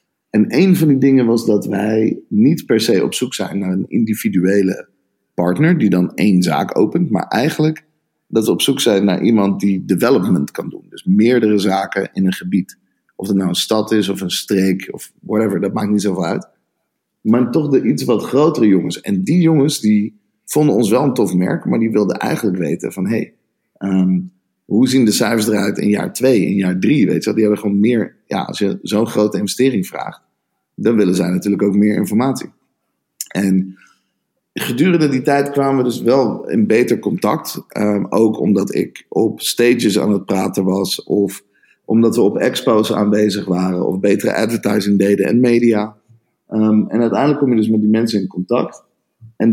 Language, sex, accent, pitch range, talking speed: Dutch, male, Dutch, 100-115 Hz, 195 wpm